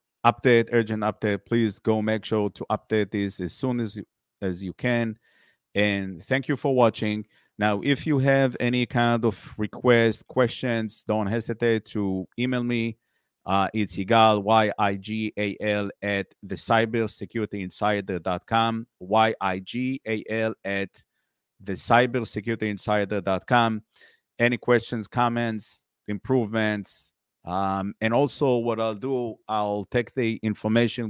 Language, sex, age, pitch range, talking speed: English, male, 50-69, 100-115 Hz, 120 wpm